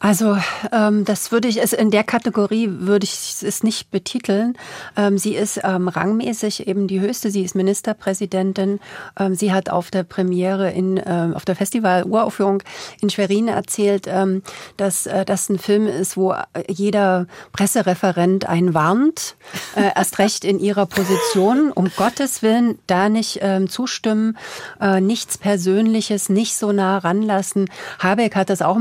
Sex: female